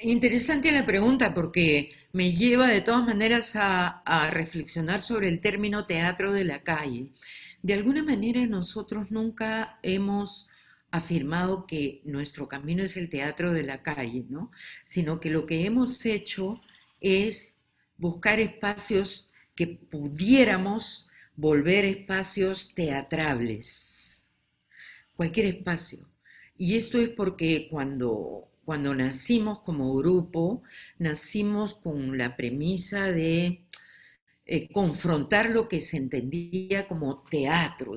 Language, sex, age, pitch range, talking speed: Spanish, female, 50-69, 150-200 Hz, 115 wpm